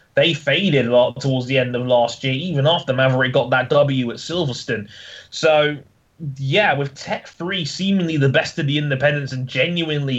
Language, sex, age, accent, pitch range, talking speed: English, male, 20-39, British, 125-165 Hz, 185 wpm